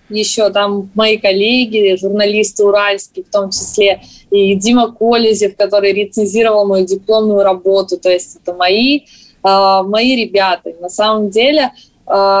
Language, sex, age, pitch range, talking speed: Russian, female, 20-39, 185-220 Hz, 130 wpm